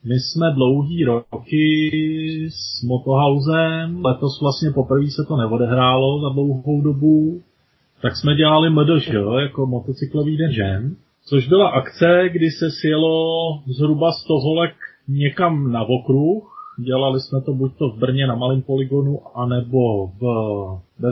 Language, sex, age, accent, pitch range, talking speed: Czech, male, 30-49, native, 130-155 Hz, 130 wpm